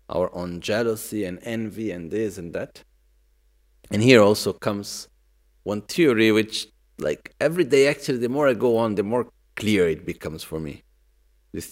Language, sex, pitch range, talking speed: Italian, male, 95-120 Hz, 170 wpm